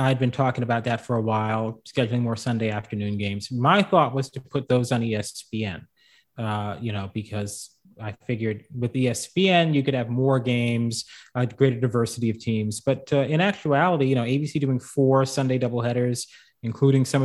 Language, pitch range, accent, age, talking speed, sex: English, 110-135 Hz, American, 30-49, 185 wpm, male